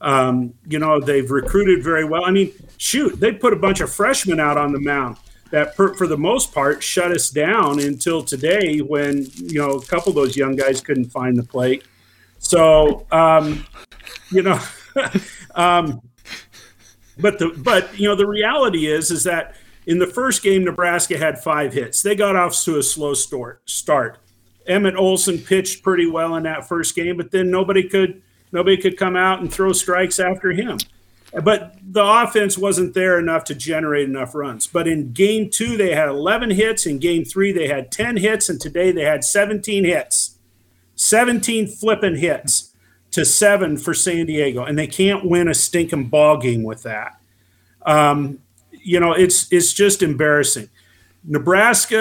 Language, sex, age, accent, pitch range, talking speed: English, male, 50-69, American, 140-190 Hz, 175 wpm